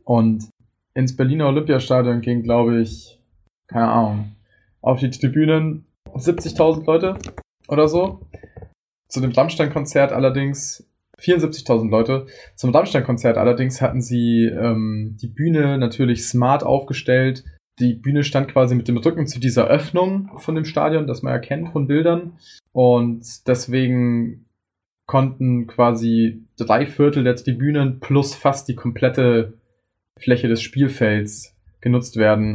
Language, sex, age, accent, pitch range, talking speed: German, male, 20-39, German, 110-135 Hz, 125 wpm